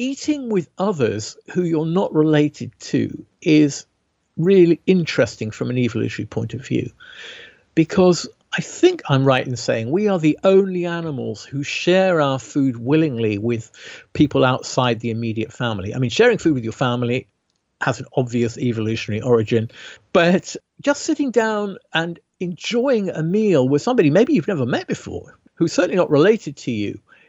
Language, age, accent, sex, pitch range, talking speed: English, 50-69, British, male, 120-190 Hz, 160 wpm